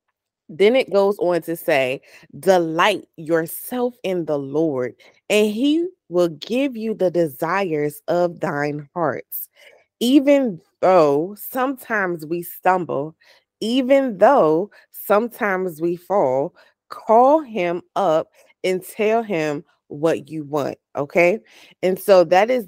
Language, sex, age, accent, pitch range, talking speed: English, female, 20-39, American, 160-220 Hz, 120 wpm